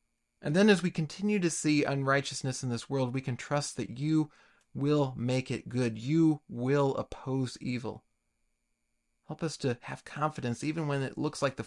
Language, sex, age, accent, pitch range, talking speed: English, male, 40-59, American, 130-165 Hz, 180 wpm